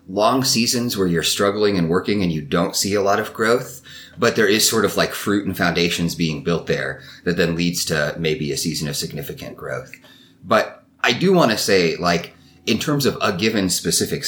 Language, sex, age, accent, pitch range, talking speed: English, male, 30-49, American, 80-95 Hz, 210 wpm